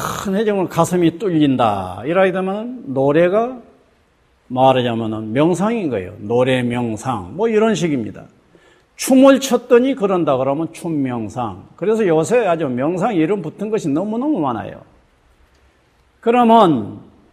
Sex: male